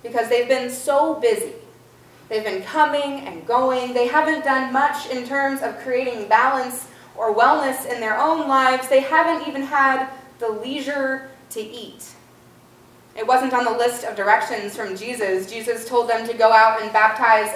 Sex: female